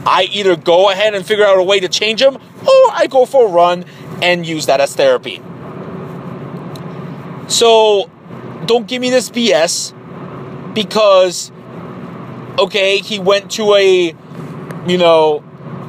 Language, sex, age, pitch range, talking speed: English, male, 30-49, 160-195 Hz, 140 wpm